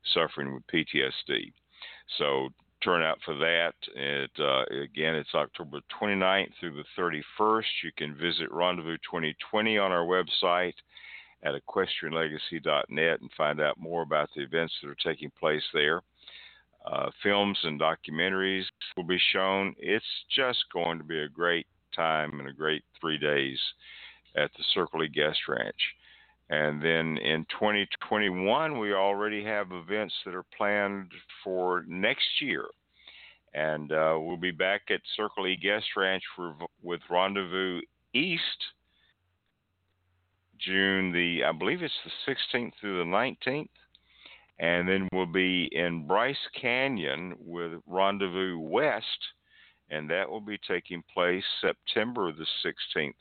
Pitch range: 80-95 Hz